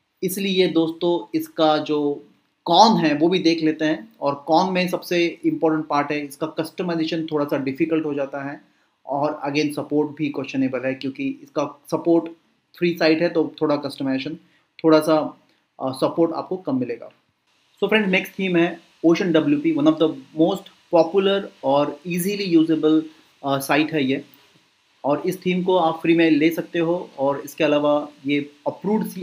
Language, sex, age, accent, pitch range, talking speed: Hindi, male, 30-49, native, 150-175 Hz, 165 wpm